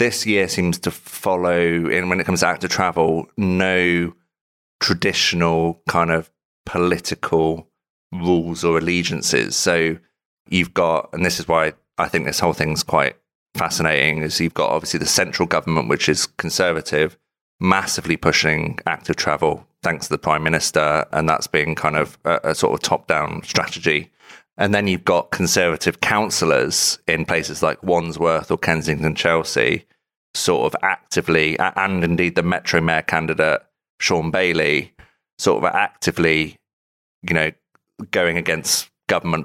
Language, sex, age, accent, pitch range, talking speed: English, male, 30-49, British, 80-90 Hz, 145 wpm